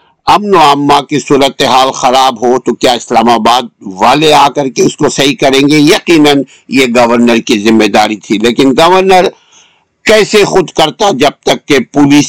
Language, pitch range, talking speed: Urdu, 125-170 Hz, 180 wpm